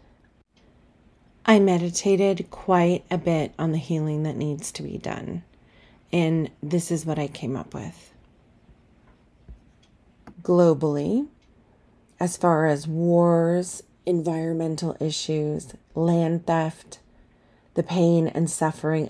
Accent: American